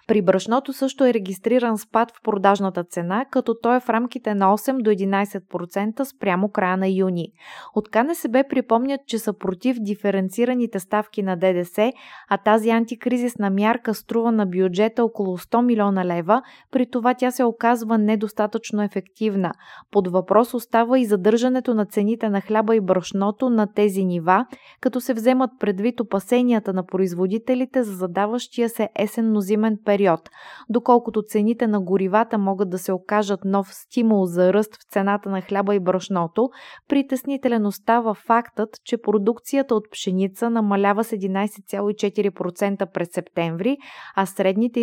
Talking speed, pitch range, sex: 145 wpm, 195-235 Hz, female